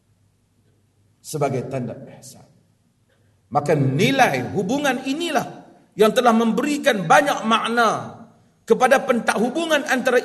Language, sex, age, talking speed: Malay, male, 40-59, 95 wpm